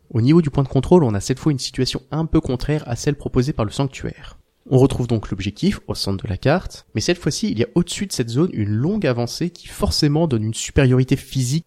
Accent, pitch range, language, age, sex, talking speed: French, 115-145 Hz, French, 30-49, male, 250 wpm